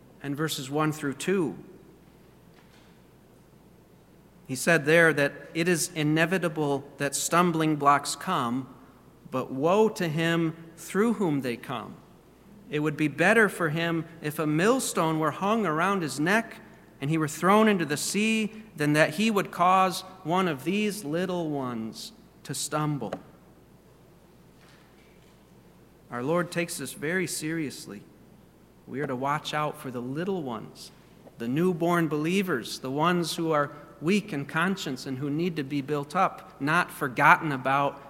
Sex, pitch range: male, 145-180 Hz